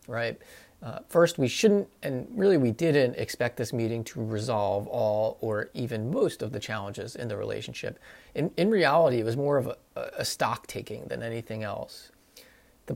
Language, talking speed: English, 180 wpm